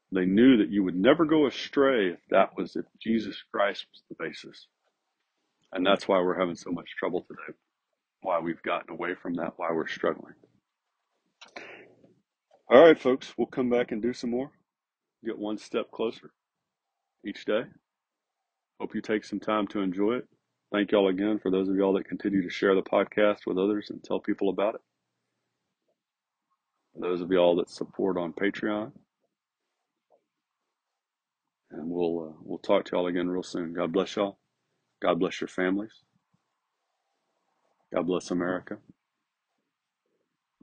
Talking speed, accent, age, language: 160 wpm, American, 40-59, English